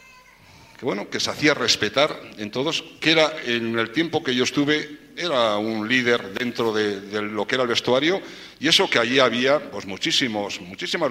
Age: 60-79